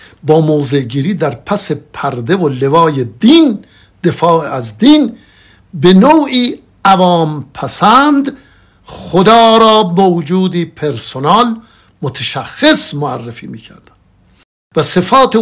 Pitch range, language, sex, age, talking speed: 130-210 Hz, Persian, male, 60-79, 95 wpm